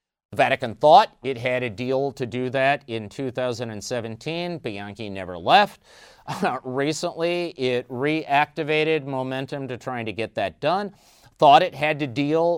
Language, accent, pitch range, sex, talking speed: English, American, 120-150 Hz, male, 145 wpm